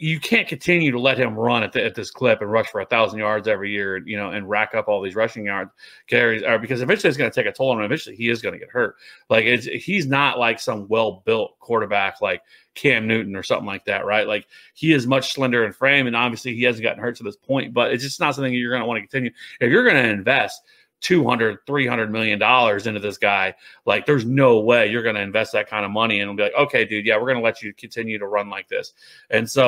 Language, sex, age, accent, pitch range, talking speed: English, male, 30-49, American, 110-140 Hz, 270 wpm